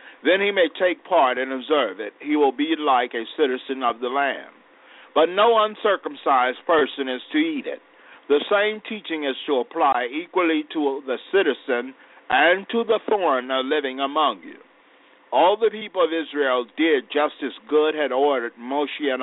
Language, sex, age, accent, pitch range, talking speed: English, male, 50-69, American, 130-200 Hz, 170 wpm